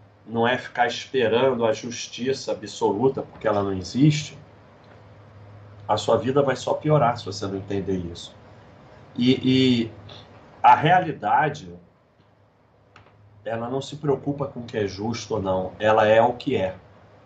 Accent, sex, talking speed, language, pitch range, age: Brazilian, male, 145 wpm, Portuguese, 100-135 Hz, 40-59